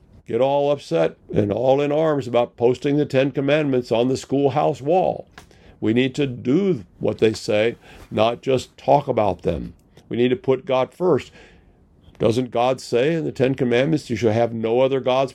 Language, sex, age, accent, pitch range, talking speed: English, male, 50-69, American, 115-135 Hz, 185 wpm